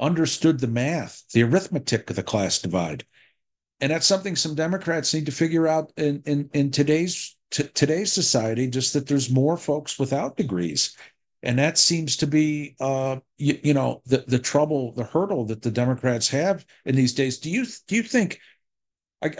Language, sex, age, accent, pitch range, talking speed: English, male, 50-69, American, 125-160 Hz, 185 wpm